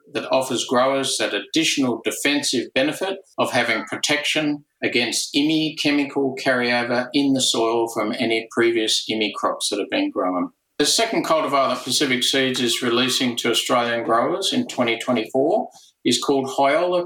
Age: 50-69